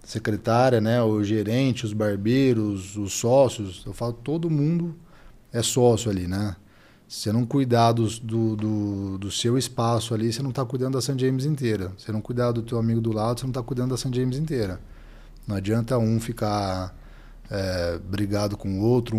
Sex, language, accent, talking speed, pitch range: male, Portuguese, Brazilian, 180 wpm, 105-125 Hz